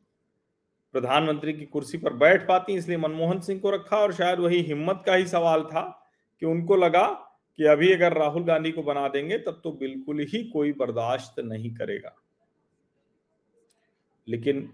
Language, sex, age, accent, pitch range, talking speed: Hindi, male, 40-59, native, 140-200 Hz, 160 wpm